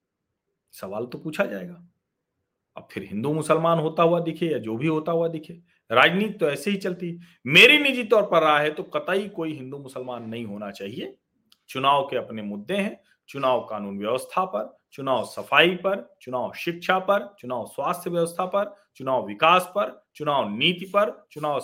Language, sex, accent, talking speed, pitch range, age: Hindi, male, native, 170 wpm, 130-195 Hz, 40-59